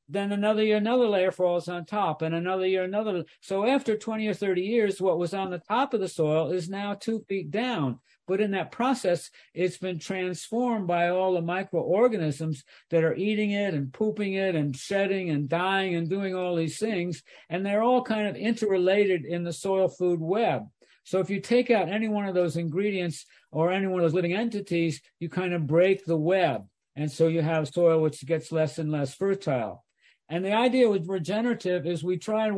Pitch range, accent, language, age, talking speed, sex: 170-200 Hz, American, English, 60-79, 205 wpm, male